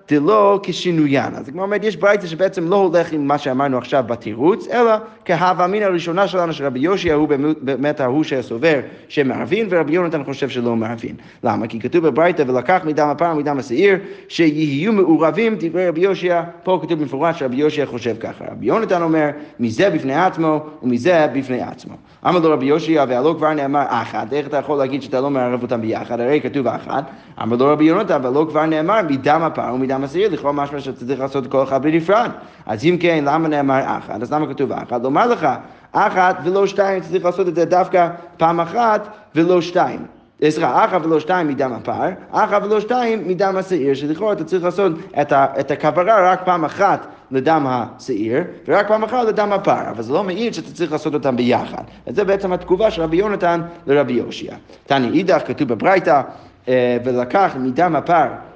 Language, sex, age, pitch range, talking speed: Hebrew, male, 30-49, 140-185 Hz, 155 wpm